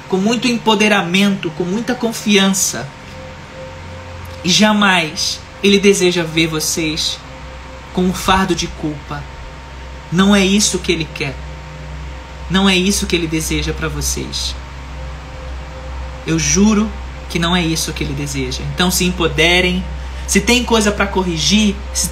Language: Portuguese